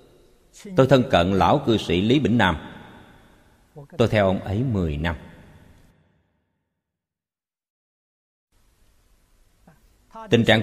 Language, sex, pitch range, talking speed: Vietnamese, male, 85-120 Hz, 95 wpm